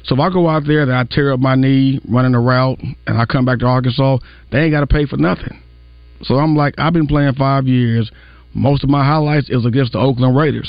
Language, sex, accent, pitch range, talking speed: English, male, American, 105-135 Hz, 255 wpm